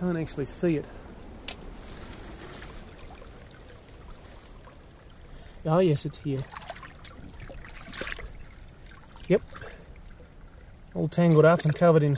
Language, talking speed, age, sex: English, 80 wpm, 30-49, male